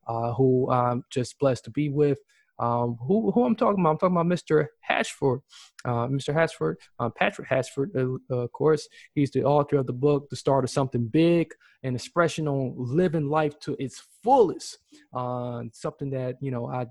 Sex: male